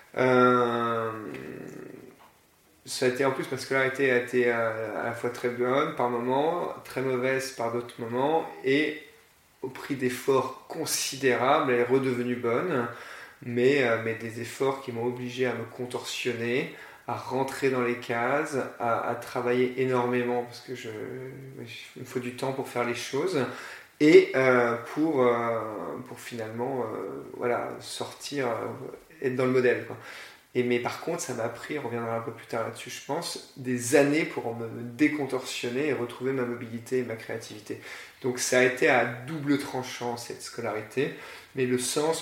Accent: French